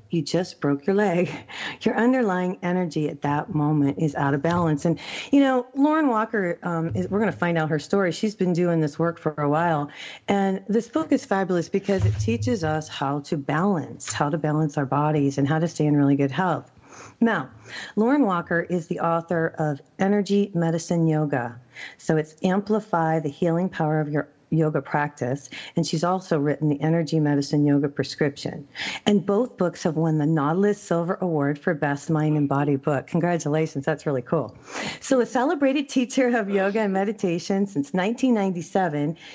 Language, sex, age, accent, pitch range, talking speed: English, female, 40-59, American, 155-200 Hz, 180 wpm